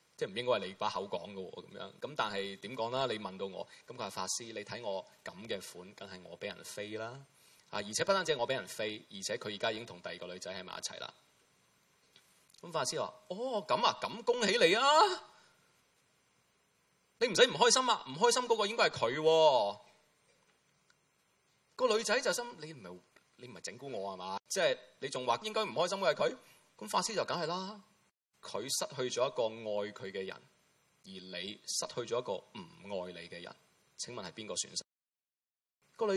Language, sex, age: Chinese, male, 20-39